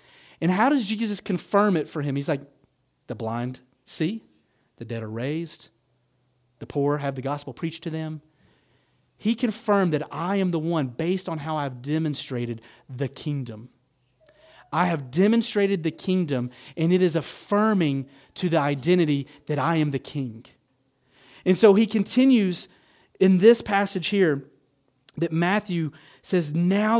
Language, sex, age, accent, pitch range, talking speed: English, male, 30-49, American, 145-200 Hz, 150 wpm